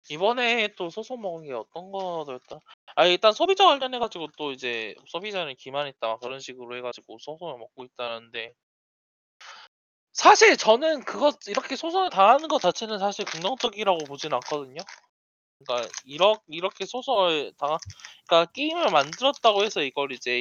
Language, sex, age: Korean, male, 20-39